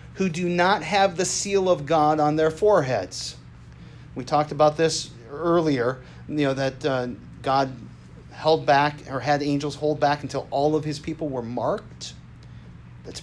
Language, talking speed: English, 165 wpm